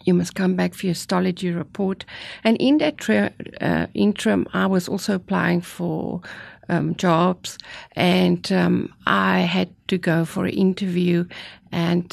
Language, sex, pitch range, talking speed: English, female, 175-195 Hz, 150 wpm